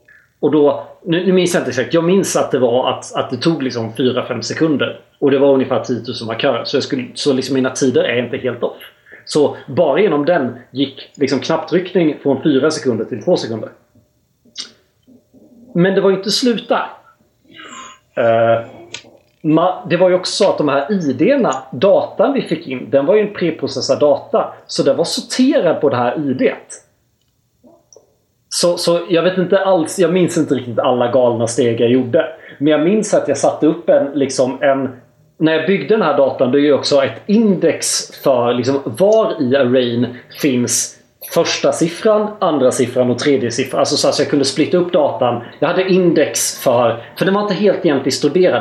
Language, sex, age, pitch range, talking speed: Swedish, male, 30-49, 130-180 Hz, 190 wpm